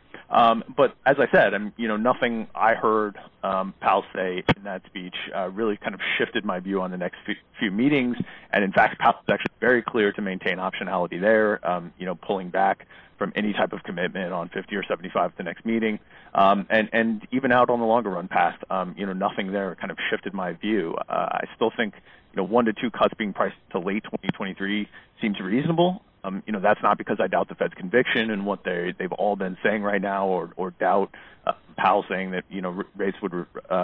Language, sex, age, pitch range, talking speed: English, male, 30-49, 95-110 Hz, 230 wpm